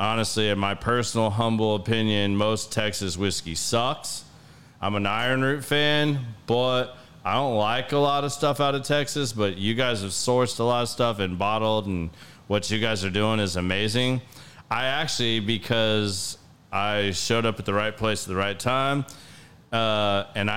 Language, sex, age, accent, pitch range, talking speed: English, male, 30-49, American, 100-125 Hz, 180 wpm